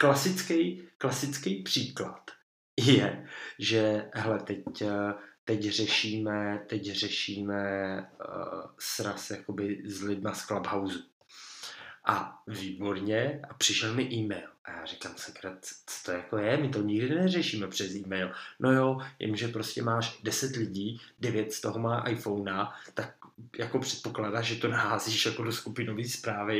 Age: 20-39